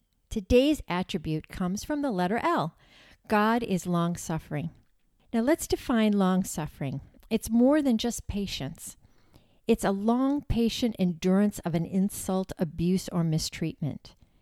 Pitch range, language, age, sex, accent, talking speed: 170-230 Hz, English, 50-69, female, American, 125 wpm